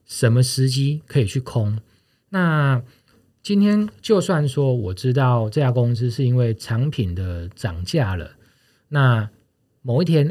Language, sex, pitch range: Chinese, male, 110-140 Hz